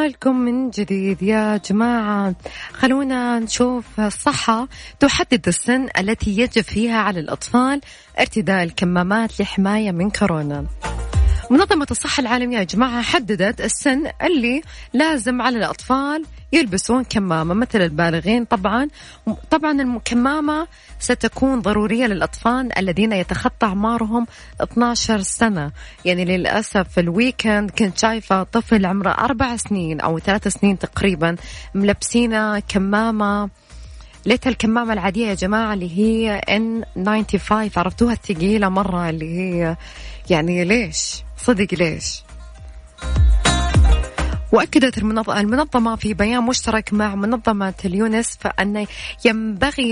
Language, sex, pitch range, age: Arabic, female, 190-245 Hz, 20-39